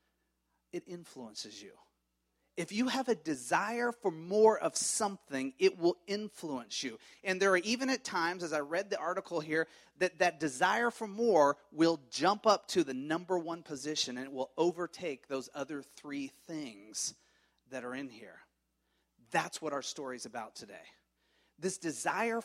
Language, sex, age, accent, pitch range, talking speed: English, male, 30-49, American, 150-200 Hz, 165 wpm